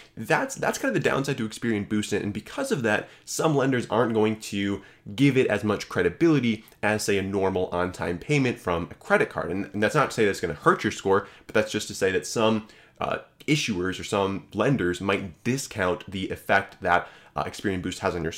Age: 20-39